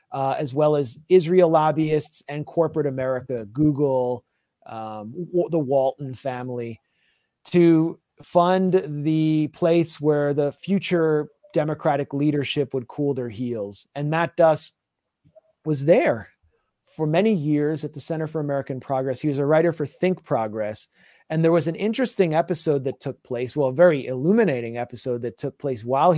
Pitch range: 130-160 Hz